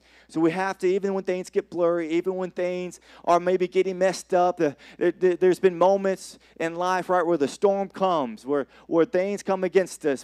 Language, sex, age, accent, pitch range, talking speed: English, male, 30-49, American, 160-190 Hz, 210 wpm